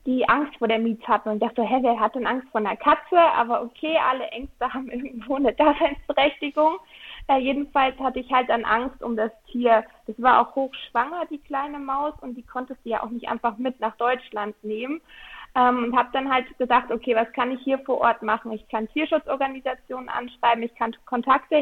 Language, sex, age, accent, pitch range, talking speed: German, female, 20-39, German, 235-285 Hz, 205 wpm